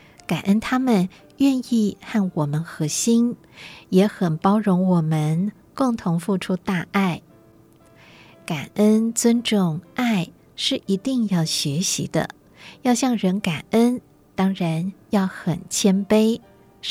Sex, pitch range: female, 175-220 Hz